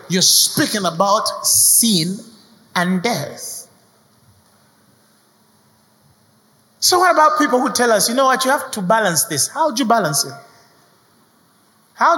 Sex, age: male, 30-49